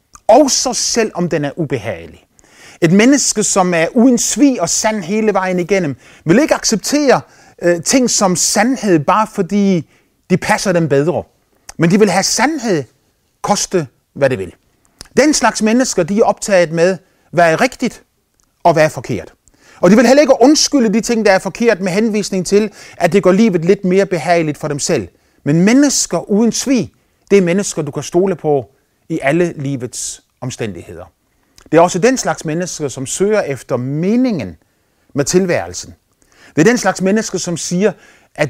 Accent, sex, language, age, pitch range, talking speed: native, male, Danish, 30-49, 150-215 Hz, 170 wpm